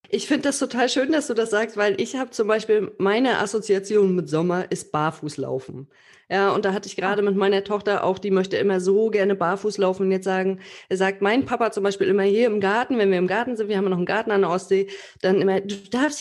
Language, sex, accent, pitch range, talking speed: German, female, German, 185-215 Hz, 250 wpm